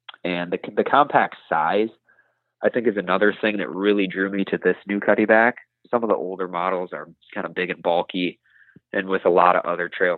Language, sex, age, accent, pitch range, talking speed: English, male, 20-39, American, 90-105 Hz, 210 wpm